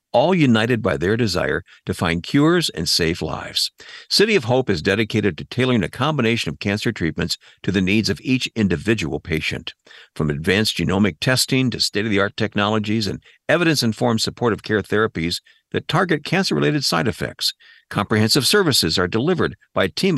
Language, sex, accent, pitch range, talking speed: English, male, American, 95-140 Hz, 160 wpm